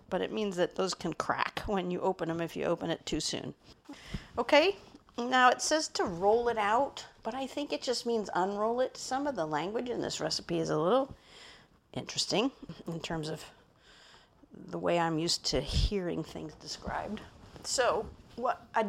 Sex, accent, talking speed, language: female, American, 185 wpm, English